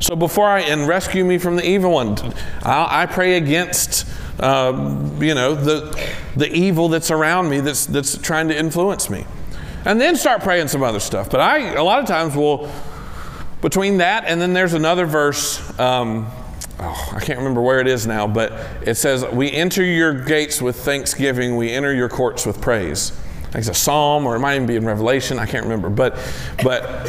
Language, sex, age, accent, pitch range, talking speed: English, male, 50-69, American, 115-160 Hz, 200 wpm